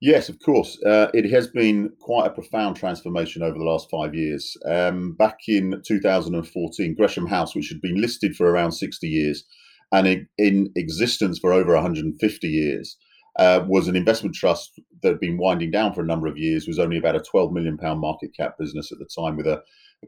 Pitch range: 80-105 Hz